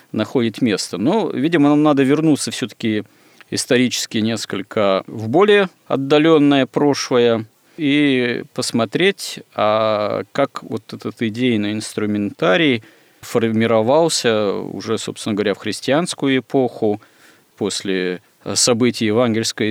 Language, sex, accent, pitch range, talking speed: Russian, male, native, 105-125 Hz, 95 wpm